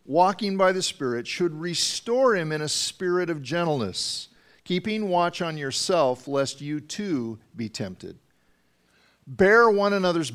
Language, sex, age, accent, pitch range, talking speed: English, male, 50-69, American, 120-160 Hz, 140 wpm